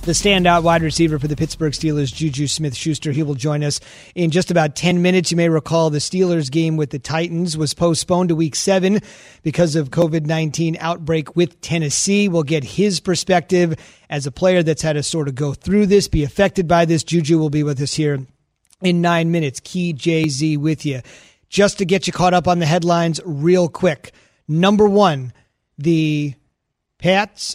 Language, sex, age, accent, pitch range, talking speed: English, male, 30-49, American, 155-185 Hz, 185 wpm